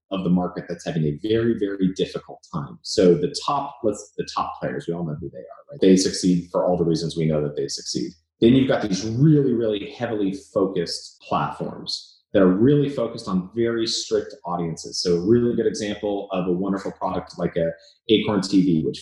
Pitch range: 90-130 Hz